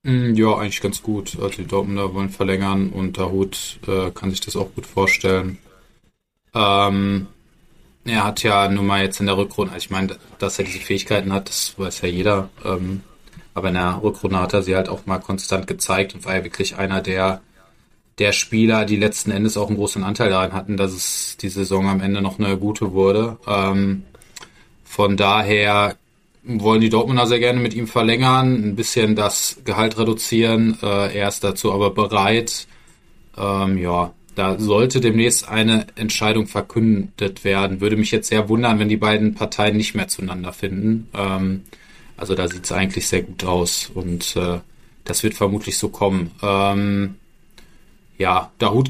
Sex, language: male, German